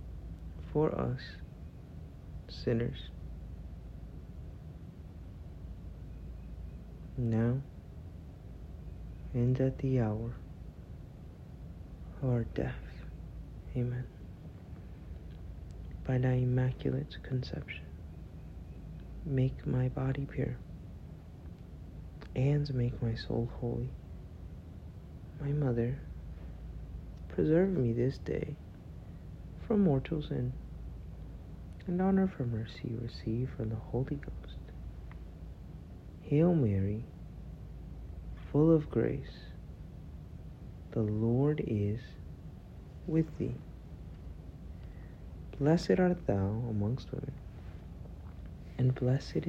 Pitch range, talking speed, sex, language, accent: 80-125 Hz, 75 wpm, male, English, American